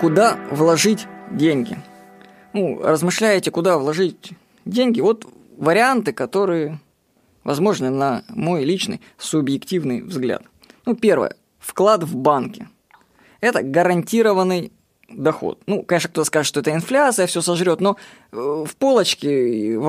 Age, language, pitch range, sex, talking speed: 20-39, Russian, 150-200 Hz, female, 115 wpm